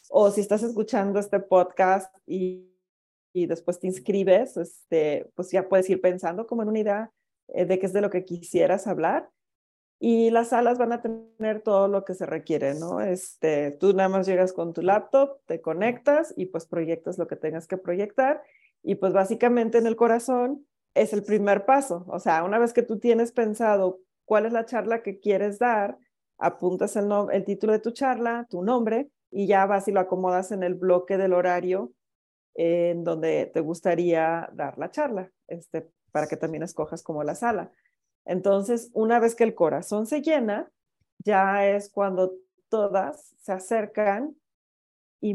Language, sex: Spanish, female